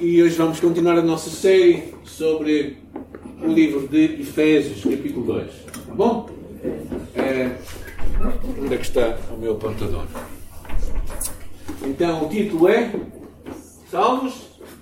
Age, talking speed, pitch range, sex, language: 50-69, 115 wpm, 115-180 Hz, male, Portuguese